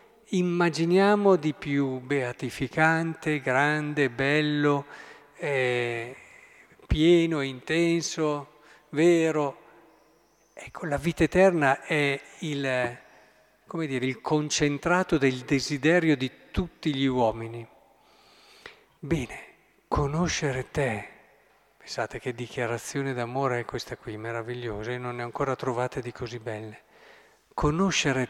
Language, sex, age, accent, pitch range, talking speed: Italian, male, 50-69, native, 120-155 Hz, 95 wpm